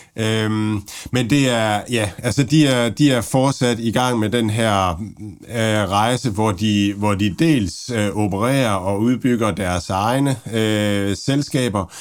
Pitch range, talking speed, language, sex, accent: 95-115 Hz, 140 wpm, Danish, male, native